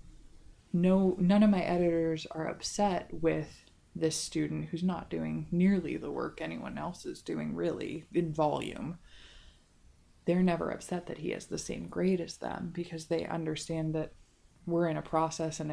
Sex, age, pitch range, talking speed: female, 20-39, 155-175 Hz, 165 wpm